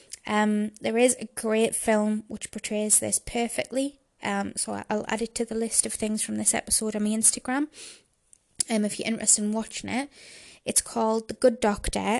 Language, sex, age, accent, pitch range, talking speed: English, female, 20-39, British, 215-240 Hz, 185 wpm